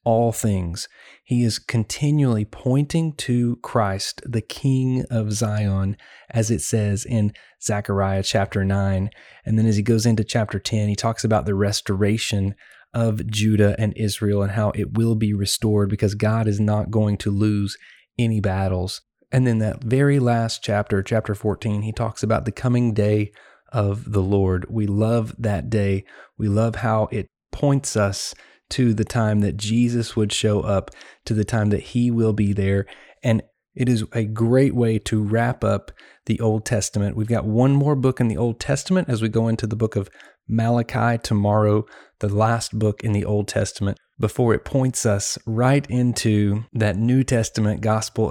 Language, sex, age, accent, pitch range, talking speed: English, male, 30-49, American, 105-115 Hz, 175 wpm